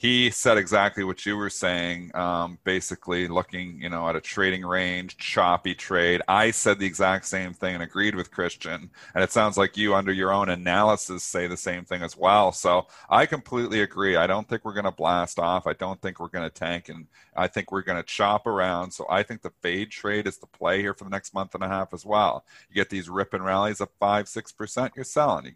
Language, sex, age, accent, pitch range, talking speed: English, male, 40-59, American, 90-110 Hz, 235 wpm